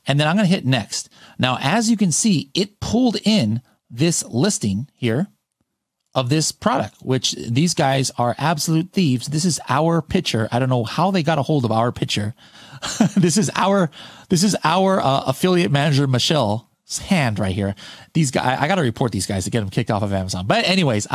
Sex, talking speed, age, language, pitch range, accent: male, 205 wpm, 30-49, English, 115-165 Hz, American